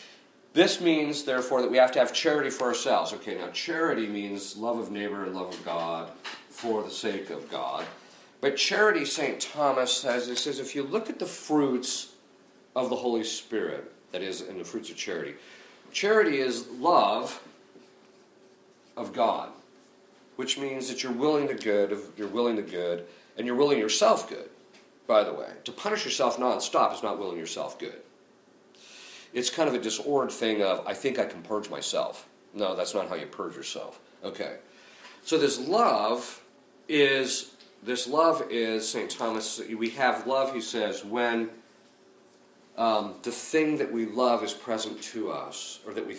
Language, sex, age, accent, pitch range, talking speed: English, male, 50-69, American, 105-135 Hz, 170 wpm